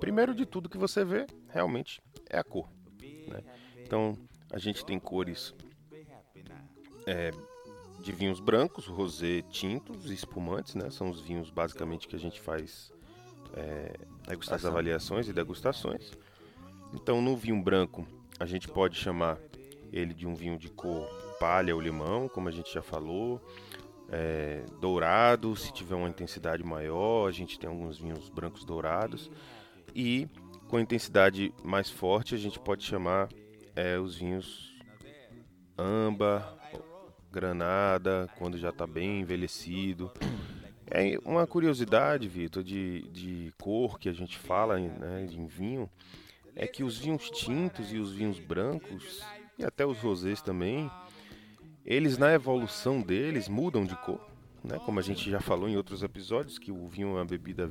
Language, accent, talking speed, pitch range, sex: Portuguese, Brazilian, 150 wpm, 85-120 Hz, male